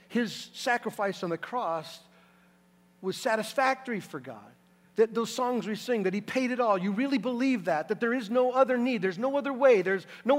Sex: male